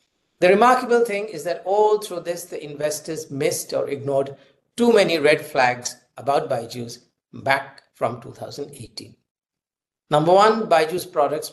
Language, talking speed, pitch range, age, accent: English, 135 wpm, 140-180 Hz, 50-69, Indian